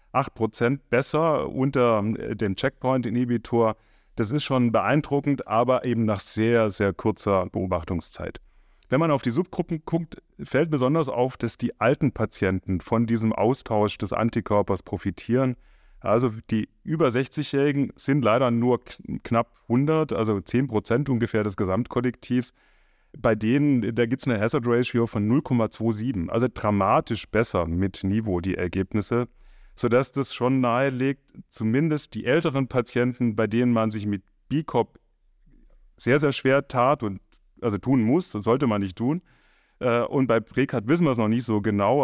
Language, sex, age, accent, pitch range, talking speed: German, male, 30-49, German, 105-130 Hz, 145 wpm